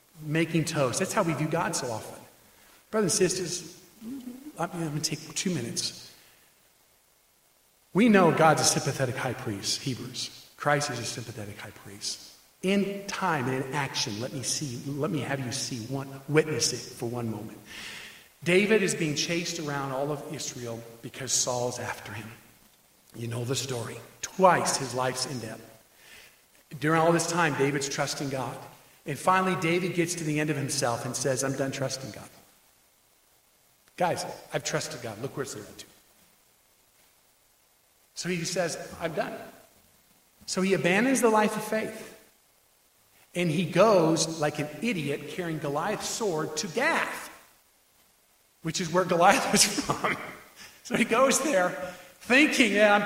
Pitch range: 130-185 Hz